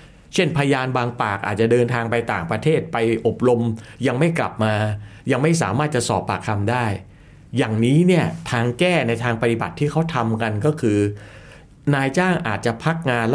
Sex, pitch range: male, 110-155 Hz